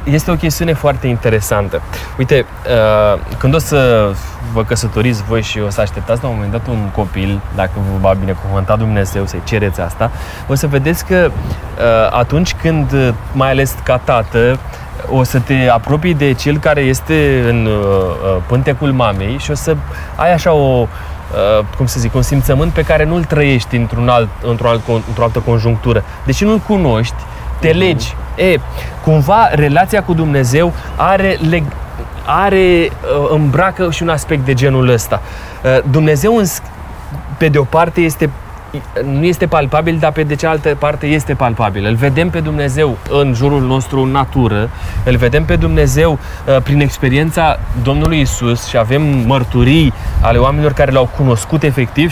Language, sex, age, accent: Romanian, male, 20-39, native